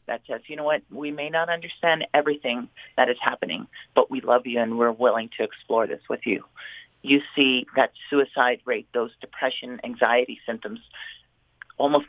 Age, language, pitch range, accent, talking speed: 40-59, English, 125-150 Hz, American, 175 wpm